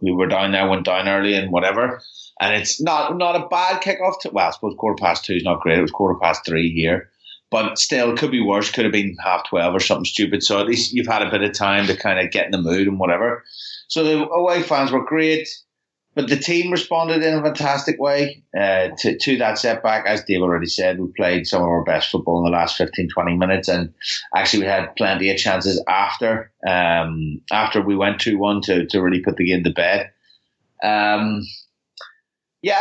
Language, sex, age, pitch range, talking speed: English, male, 30-49, 90-120 Hz, 225 wpm